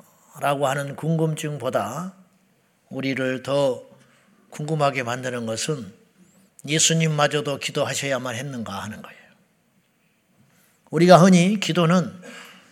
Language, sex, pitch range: Korean, male, 145-175 Hz